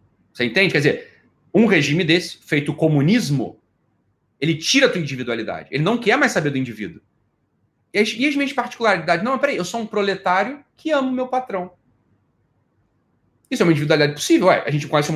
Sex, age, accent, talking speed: male, 30-49, Brazilian, 195 wpm